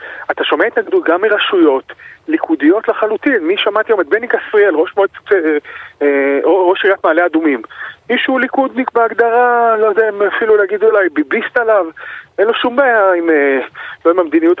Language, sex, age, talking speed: Hebrew, male, 30-49, 155 wpm